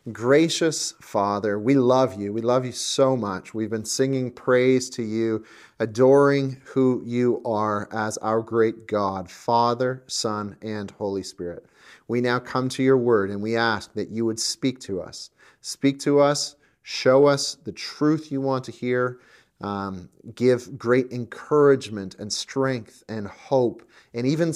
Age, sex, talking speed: 30-49, male, 160 wpm